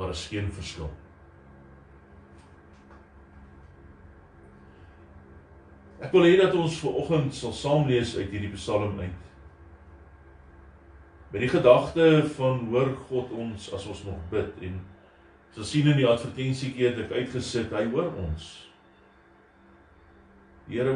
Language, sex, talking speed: English, male, 115 wpm